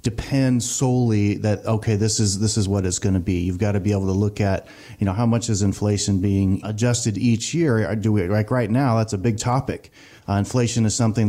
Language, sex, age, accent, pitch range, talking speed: English, male, 30-49, American, 105-120 Hz, 235 wpm